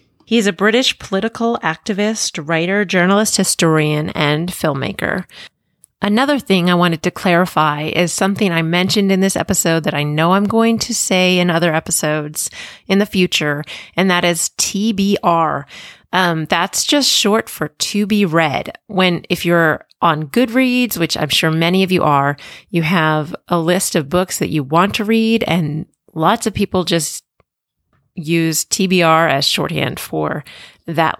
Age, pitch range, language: 30-49, 165-210 Hz, English